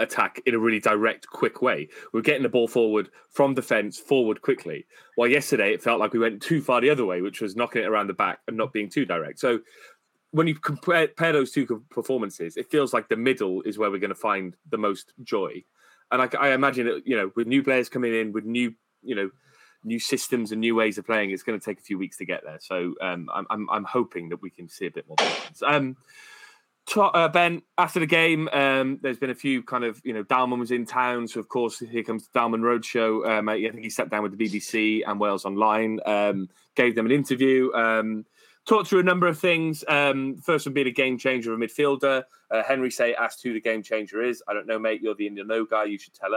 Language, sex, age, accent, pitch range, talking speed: English, male, 20-39, British, 110-140 Hz, 245 wpm